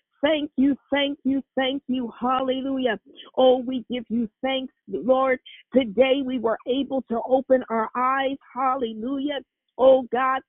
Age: 50-69